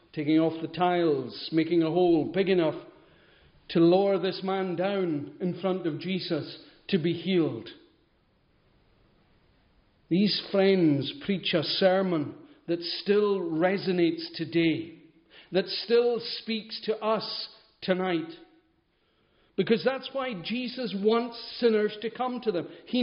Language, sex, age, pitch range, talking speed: English, male, 50-69, 170-220 Hz, 120 wpm